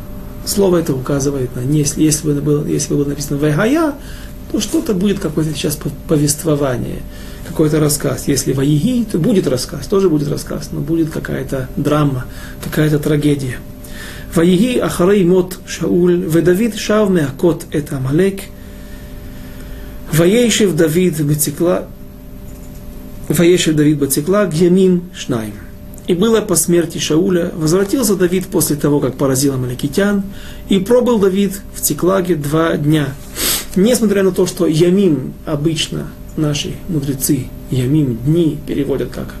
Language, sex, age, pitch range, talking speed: Russian, male, 40-59, 135-180 Hz, 125 wpm